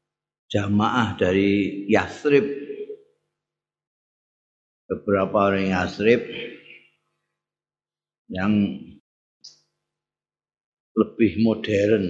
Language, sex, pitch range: Indonesian, male, 100-115 Hz